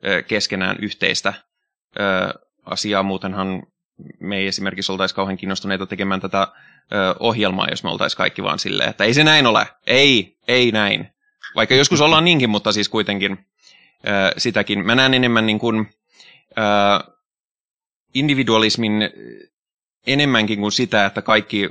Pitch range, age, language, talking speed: 95-115 Hz, 20-39, Finnish, 125 wpm